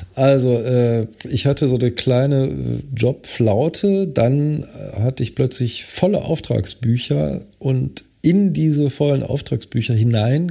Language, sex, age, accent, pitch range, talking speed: German, male, 40-59, German, 110-130 Hz, 115 wpm